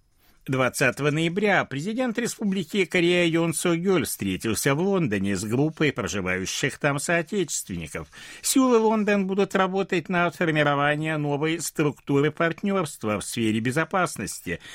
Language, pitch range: Russian, 115-185 Hz